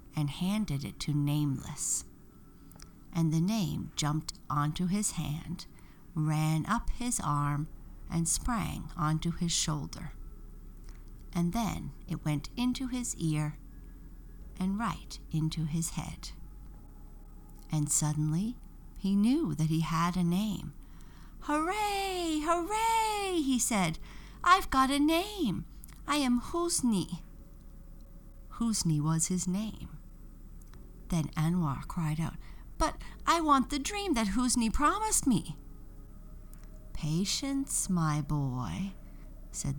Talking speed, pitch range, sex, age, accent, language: 110 wpm, 150-225 Hz, female, 60-79, American, English